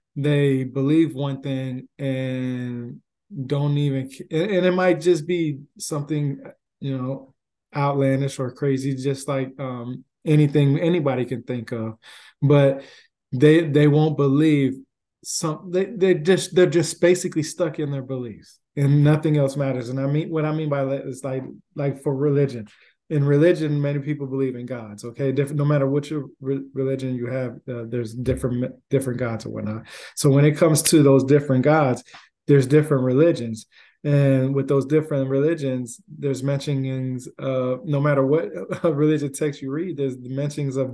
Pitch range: 130-150 Hz